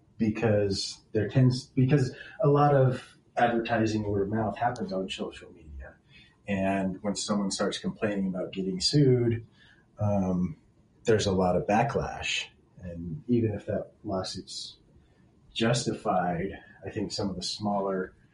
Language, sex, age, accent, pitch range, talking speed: English, male, 30-49, American, 95-115 Hz, 135 wpm